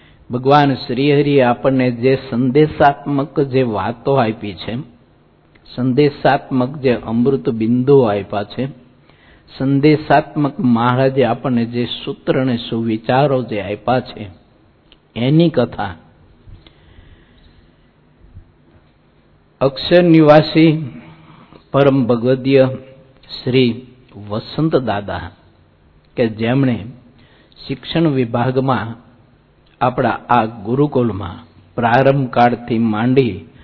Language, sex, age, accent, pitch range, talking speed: English, male, 60-79, Indian, 105-135 Hz, 55 wpm